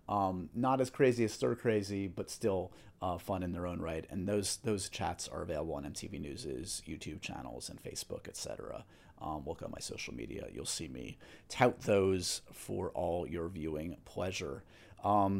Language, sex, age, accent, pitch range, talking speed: English, male, 30-49, American, 100-125 Hz, 175 wpm